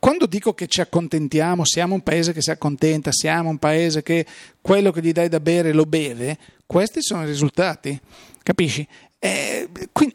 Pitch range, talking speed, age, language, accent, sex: 155-185 Hz, 170 wpm, 40-59, Italian, native, male